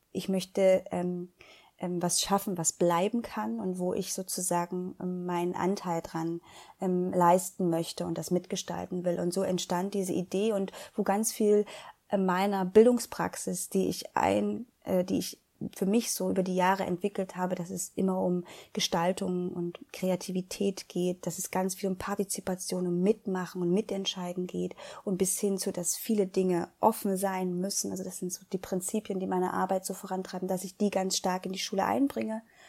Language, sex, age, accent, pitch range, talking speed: German, female, 20-39, German, 185-215 Hz, 180 wpm